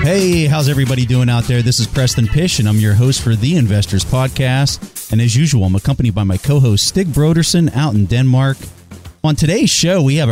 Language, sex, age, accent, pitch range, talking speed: English, male, 30-49, American, 105-145 Hz, 210 wpm